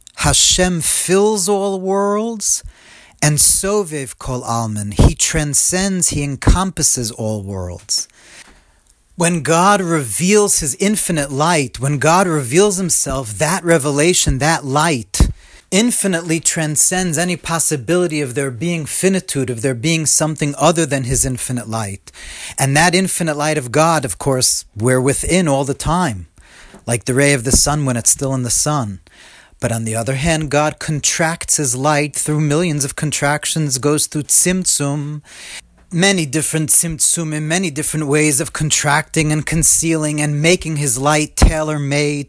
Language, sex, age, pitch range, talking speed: English, male, 40-59, 130-165 Hz, 145 wpm